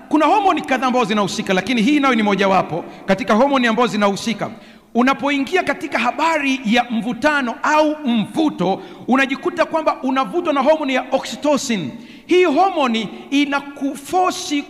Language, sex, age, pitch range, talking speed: Swahili, male, 50-69, 230-295 Hz, 130 wpm